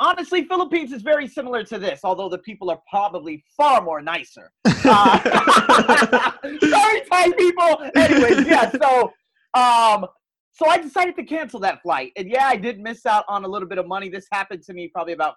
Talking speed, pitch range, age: 185 wpm, 165-250 Hz, 30-49